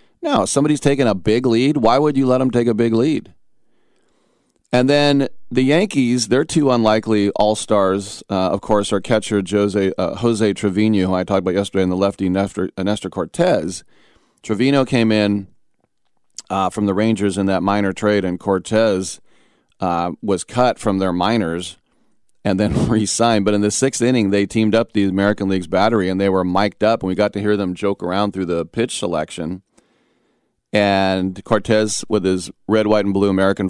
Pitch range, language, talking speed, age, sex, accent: 95-110 Hz, English, 185 wpm, 40-59, male, American